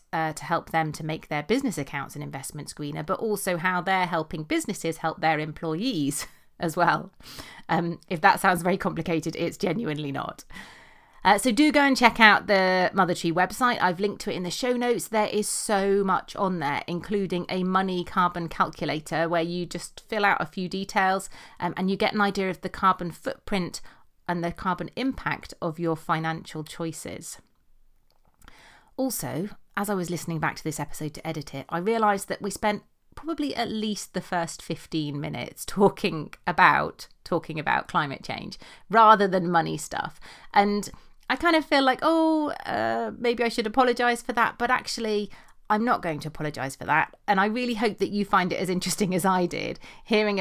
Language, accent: English, British